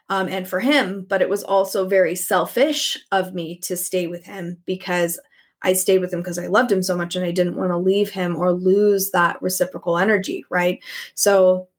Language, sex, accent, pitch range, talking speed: English, female, American, 180-195 Hz, 210 wpm